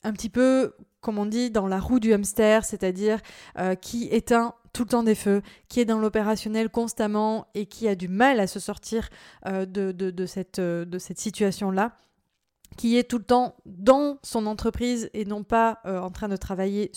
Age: 20-39